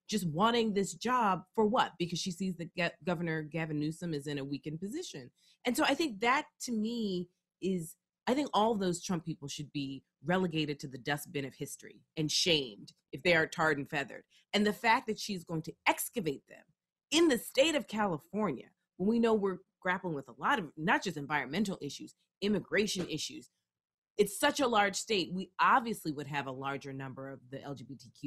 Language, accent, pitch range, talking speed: English, American, 145-210 Hz, 195 wpm